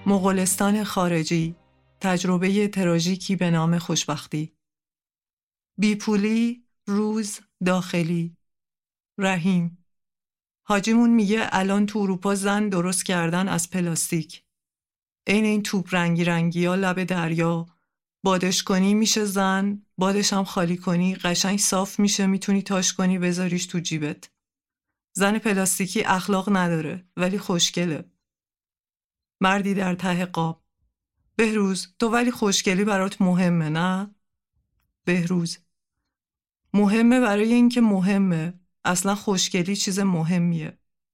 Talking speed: 105 wpm